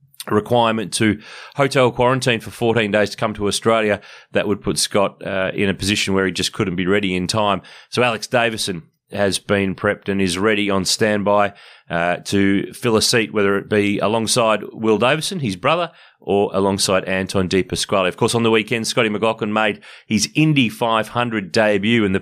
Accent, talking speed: Australian, 190 wpm